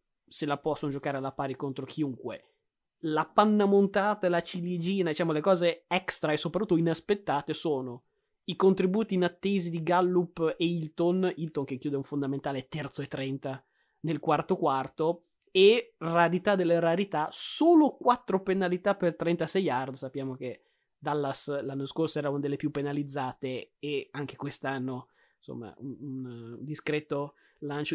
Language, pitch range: Italian, 145-185 Hz